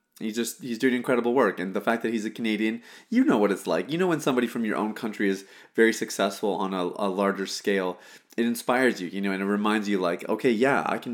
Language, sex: English, male